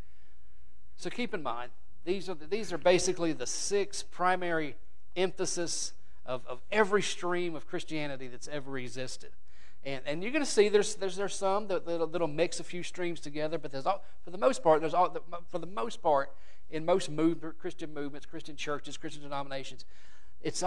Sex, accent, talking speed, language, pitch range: male, American, 185 wpm, English, 135-170 Hz